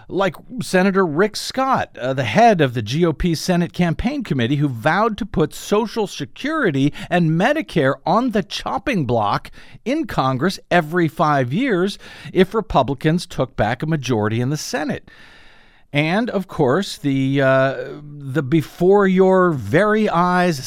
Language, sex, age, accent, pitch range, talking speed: English, male, 50-69, American, 135-190 Hz, 135 wpm